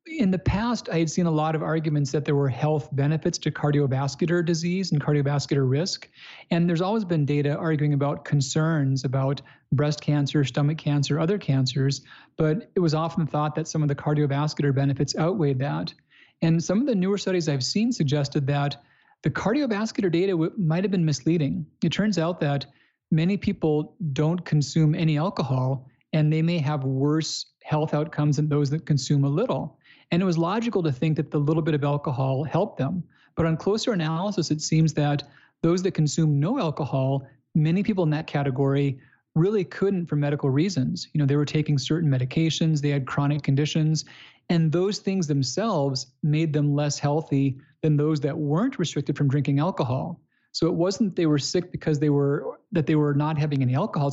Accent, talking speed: American, 185 wpm